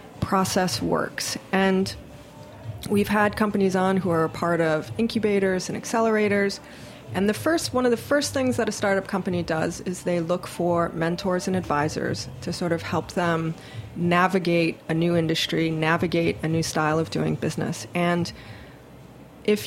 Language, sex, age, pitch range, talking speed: English, female, 30-49, 165-205 Hz, 160 wpm